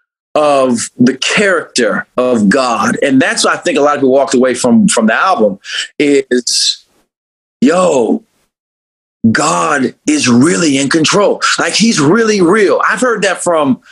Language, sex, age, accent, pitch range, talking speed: English, male, 30-49, American, 140-225 Hz, 150 wpm